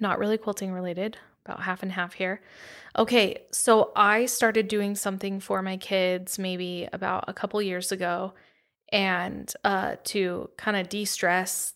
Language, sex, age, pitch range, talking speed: English, female, 20-39, 185-215 Hz, 155 wpm